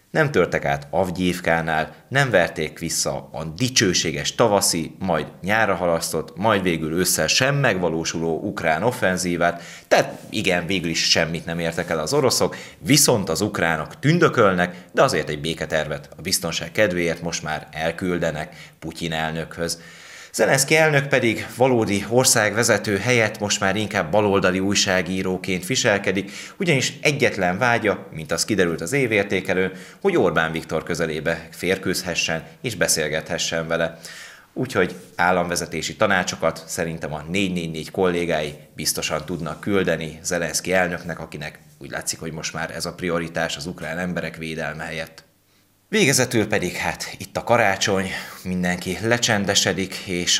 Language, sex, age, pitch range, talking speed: Hungarian, male, 30-49, 80-95 Hz, 130 wpm